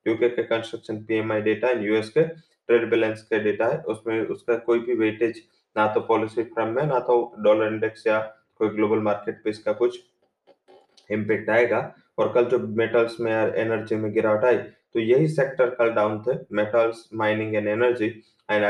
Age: 20-39